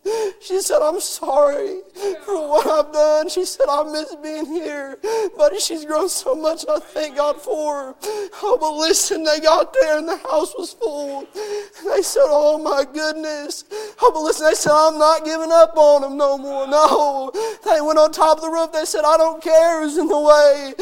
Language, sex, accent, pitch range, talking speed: English, male, American, 275-330 Hz, 200 wpm